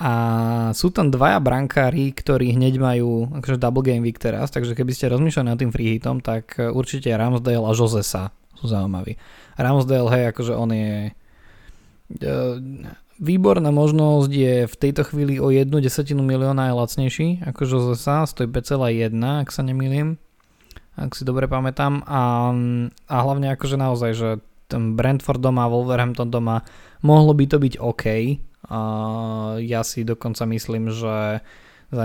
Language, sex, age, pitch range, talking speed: Slovak, male, 20-39, 110-130 Hz, 145 wpm